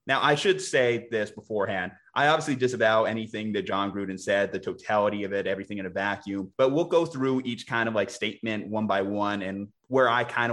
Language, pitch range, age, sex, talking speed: English, 105-145 Hz, 30-49, male, 215 wpm